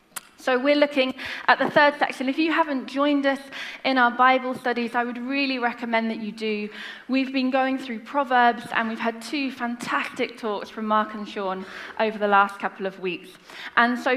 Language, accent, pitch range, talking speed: English, British, 200-255 Hz, 195 wpm